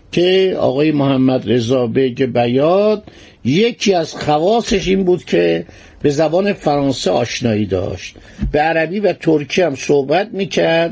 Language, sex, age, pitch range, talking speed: Persian, male, 60-79, 125-180 Hz, 130 wpm